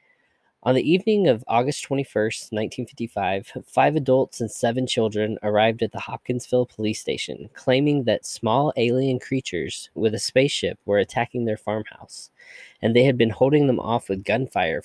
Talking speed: 160 wpm